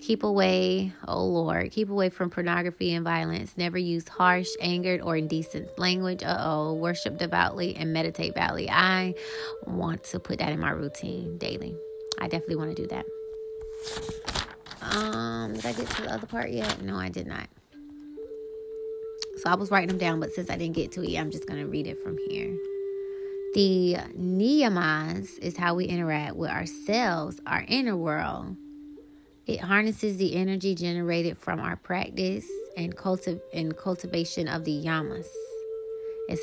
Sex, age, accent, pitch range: female, 20-39, American, 165-215 Hz